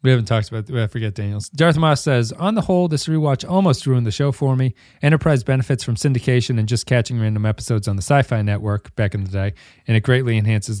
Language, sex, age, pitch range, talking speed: English, male, 40-59, 115-145 Hz, 240 wpm